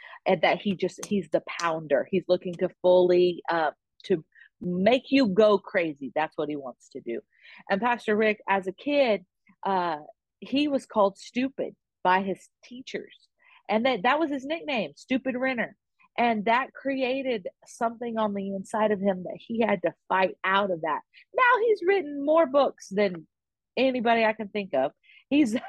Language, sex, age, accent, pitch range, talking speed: English, female, 40-59, American, 185-240 Hz, 175 wpm